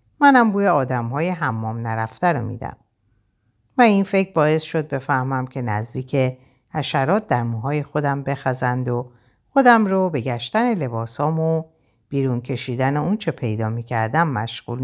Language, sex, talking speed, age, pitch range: Persian, female, 140 wpm, 50-69, 115-155 Hz